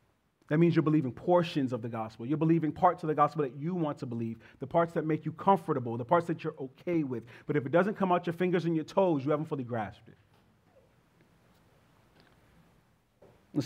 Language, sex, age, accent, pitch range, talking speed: English, male, 40-59, American, 120-185 Hz, 210 wpm